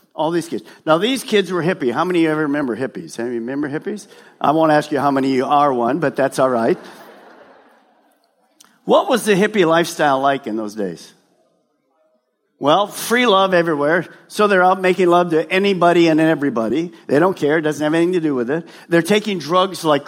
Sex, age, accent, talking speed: male, 50-69, American, 210 wpm